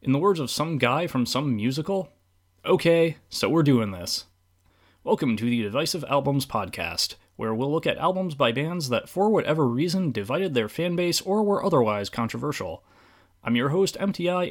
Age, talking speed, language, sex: 30-49, 175 wpm, English, male